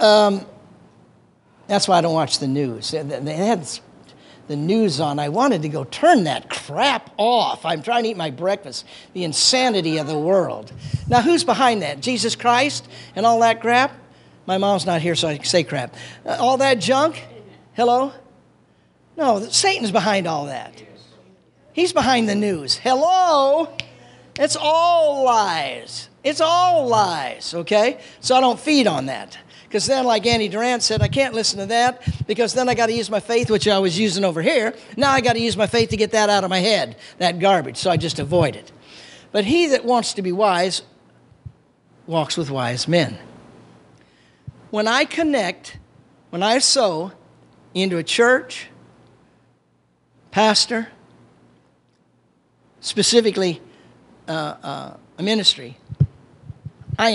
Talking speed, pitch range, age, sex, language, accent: 160 wpm, 160-245 Hz, 40-59, male, English, American